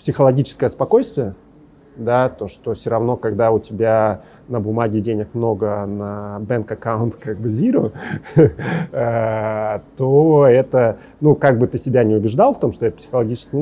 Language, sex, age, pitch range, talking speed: Russian, male, 30-49, 105-125 Hz, 155 wpm